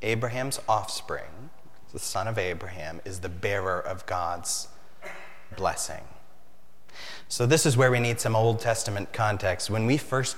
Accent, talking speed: American, 145 wpm